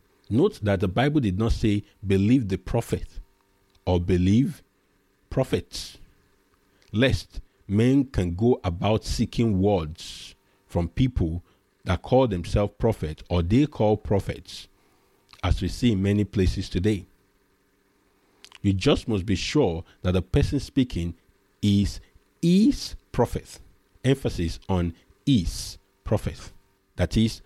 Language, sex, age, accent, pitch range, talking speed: English, male, 50-69, Nigerian, 90-120 Hz, 120 wpm